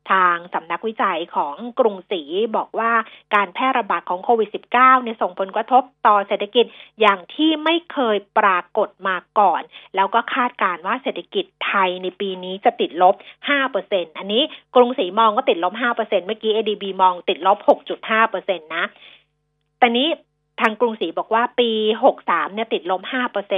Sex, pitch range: female, 195-260 Hz